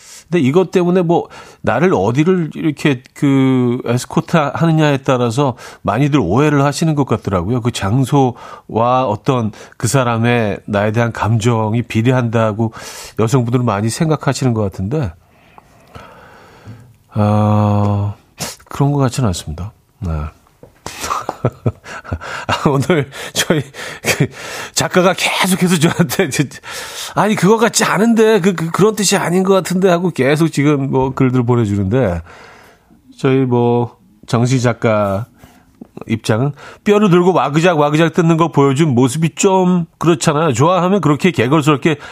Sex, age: male, 40-59